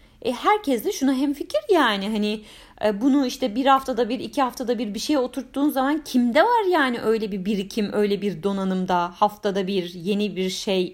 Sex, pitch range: female, 190-270 Hz